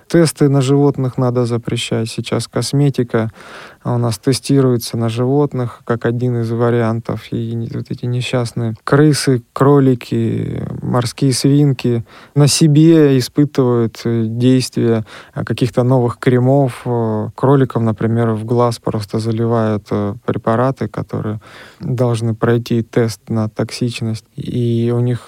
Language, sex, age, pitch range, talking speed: Russian, male, 20-39, 115-135 Hz, 115 wpm